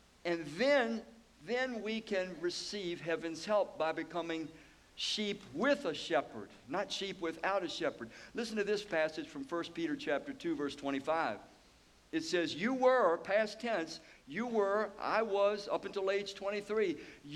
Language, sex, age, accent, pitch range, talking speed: English, male, 60-79, American, 165-220 Hz, 150 wpm